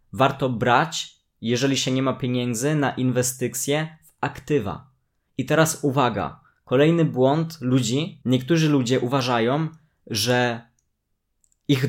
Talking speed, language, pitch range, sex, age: 110 wpm, Polish, 110-140 Hz, male, 20-39